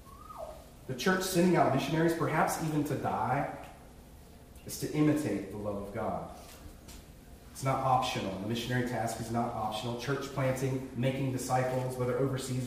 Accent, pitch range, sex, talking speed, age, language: American, 105-150 Hz, male, 145 wpm, 40-59, English